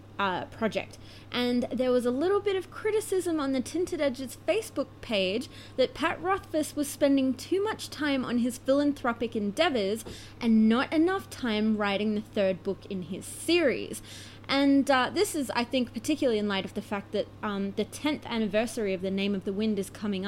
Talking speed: 190 wpm